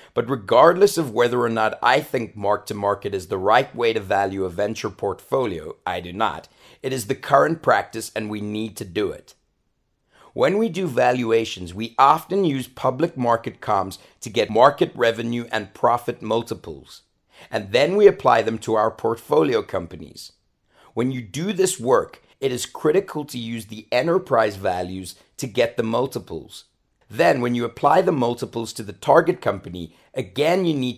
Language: English